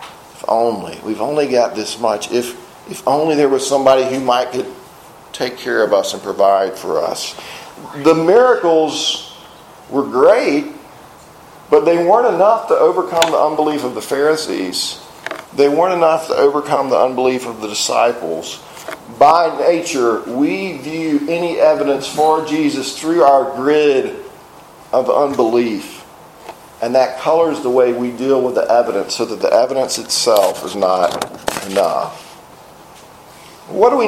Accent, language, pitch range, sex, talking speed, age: American, English, 130-170 Hz, male, 145 wpm, 50-69